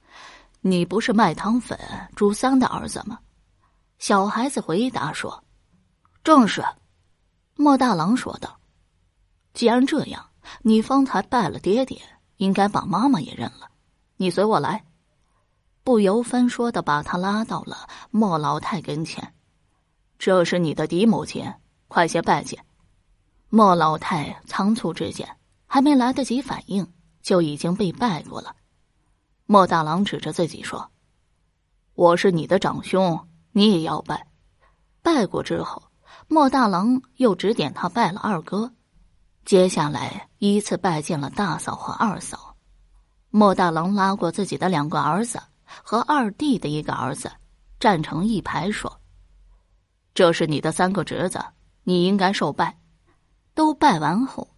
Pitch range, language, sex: 155-225 Hz, Chinese, female